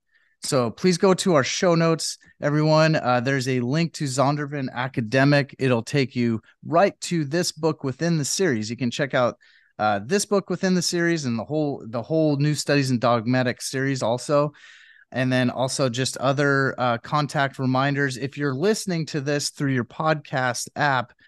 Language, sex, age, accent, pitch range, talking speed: English, male, 30-49, American, 115-150 Hz, 180 wpm